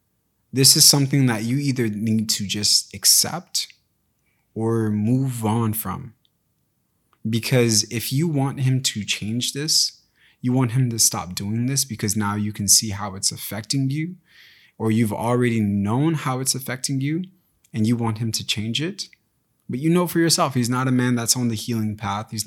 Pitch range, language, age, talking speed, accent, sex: 105-130 Hz, English, 20-39, 180 wpm, American, male